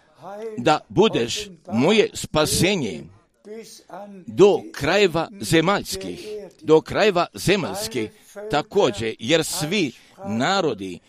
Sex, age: male, 50-69